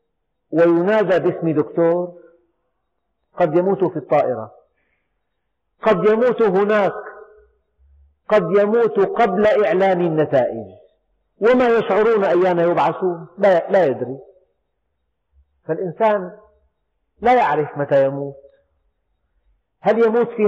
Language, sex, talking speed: Arabic, male, 90 wpm